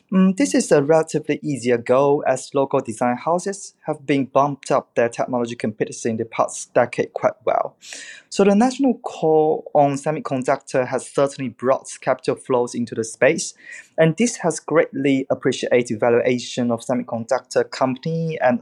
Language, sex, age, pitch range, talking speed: English, male, 20-39, 125-180 Hz, 155 wpm